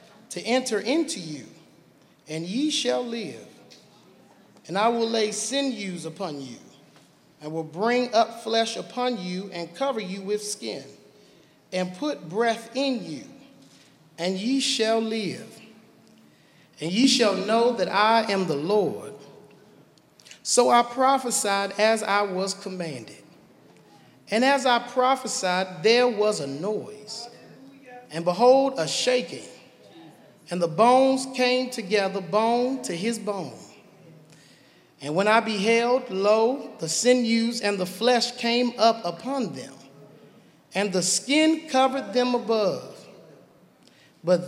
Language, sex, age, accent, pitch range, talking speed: English, male, 40-59, American, 185-245 Hz, 125 wpm